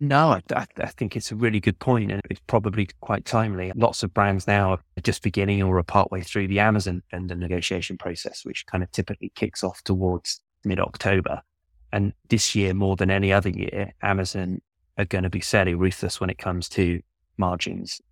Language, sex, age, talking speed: English, male, 20-39, 195 wpm